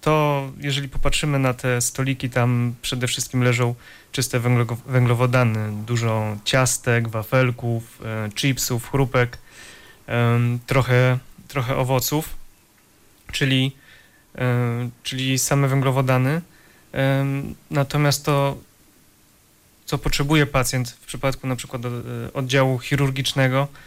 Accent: native